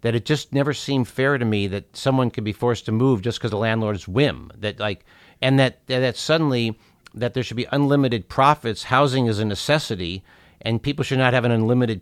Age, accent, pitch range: 50-69, American, 100-135 Hz